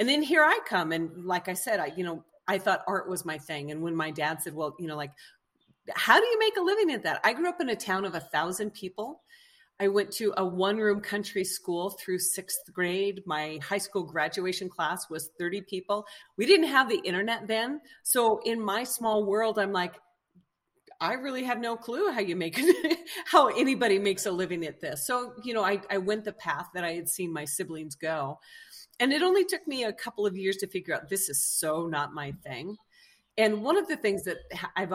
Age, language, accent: 40-59, English, American